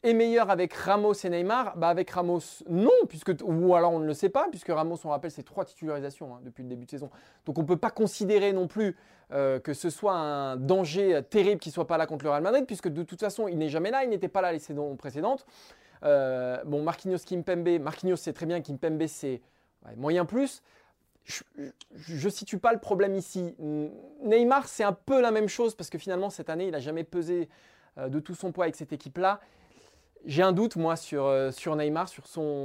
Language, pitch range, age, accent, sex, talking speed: French, 150-195 Hz, 20-39, French, male, 225 wpm